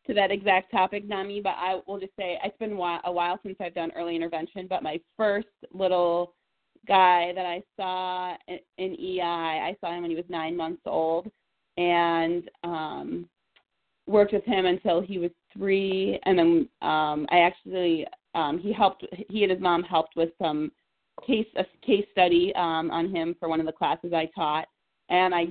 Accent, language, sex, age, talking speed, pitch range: American, English, female, 30-49, 185 wpm, 165-195 Hz